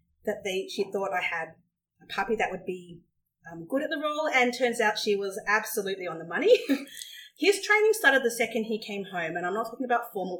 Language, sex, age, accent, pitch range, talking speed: English, female, 30-49, Australian, 175-235 Hz, 225 wpm